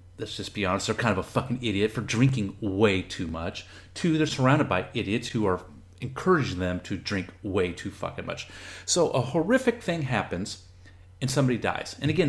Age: 30-49